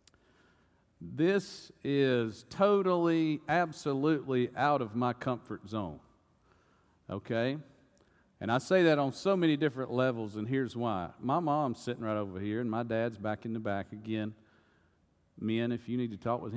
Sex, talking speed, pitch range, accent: male, 155 wpm, 110-150 Hz, American